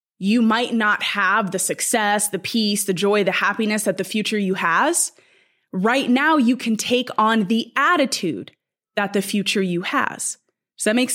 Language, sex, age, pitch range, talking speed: English, female, 20-39, 200-255 Hz, 180 wpm